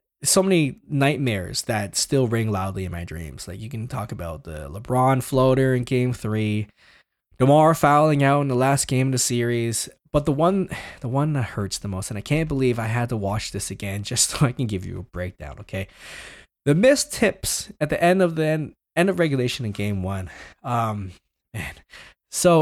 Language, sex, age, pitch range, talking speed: English, male, 20-39, 100-140 Hz, 205 wpm